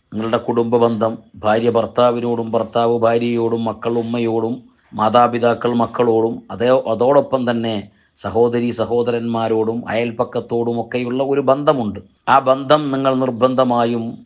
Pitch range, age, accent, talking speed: 110-130 Hz, 30-49, native, 95 wpm